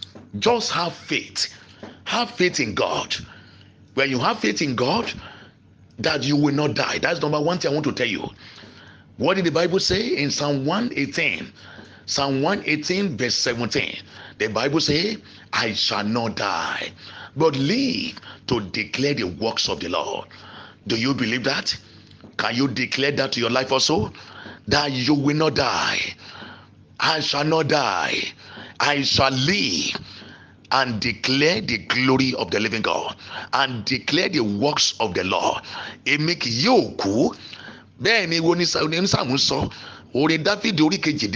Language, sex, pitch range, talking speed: English, male, 115-155 Hz, 135 wpm